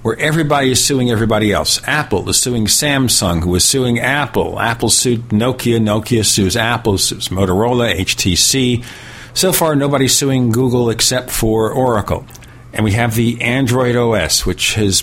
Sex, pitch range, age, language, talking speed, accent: male, 110-130 Hz, 50-69, English, 155 wpm, American